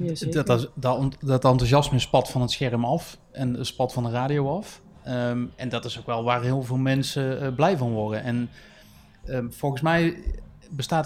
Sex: male